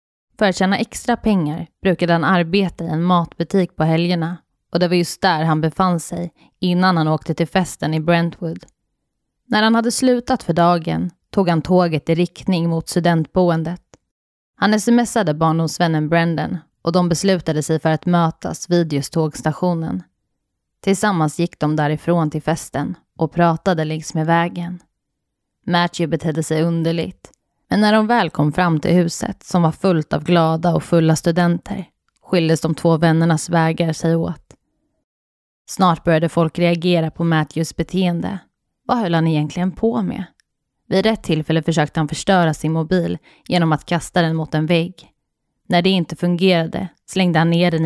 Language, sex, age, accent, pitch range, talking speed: Swedish, female, 20-39, native, 160-180 Hz, 160 wpm